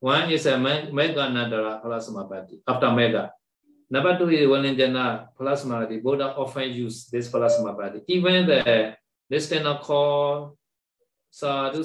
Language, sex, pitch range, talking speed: Vietnamese, male, 115-150 Hz, 135 wpm